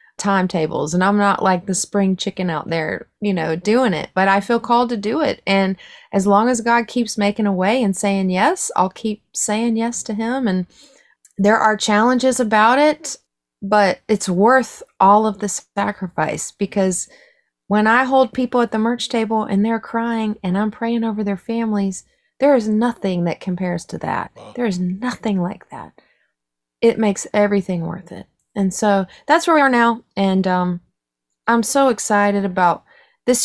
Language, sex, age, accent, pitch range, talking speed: English, female, 30-49, American, 185-230 Hz, 180 wpm